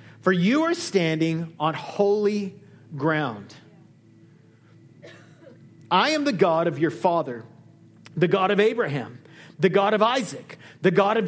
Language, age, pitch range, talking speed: English, 40-59, 145-205 Hz, 135 wpm